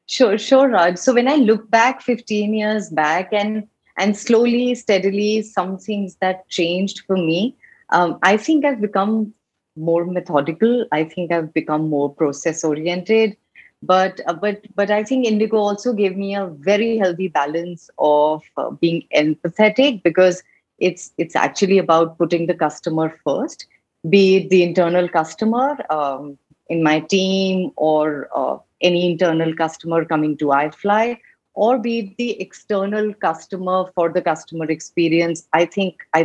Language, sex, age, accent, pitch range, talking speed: English, female, 30-49, Indian, 160-215 Hz, 150 wpm